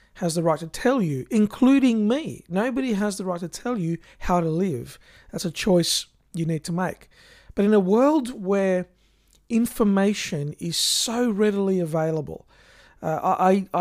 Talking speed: 155 wpm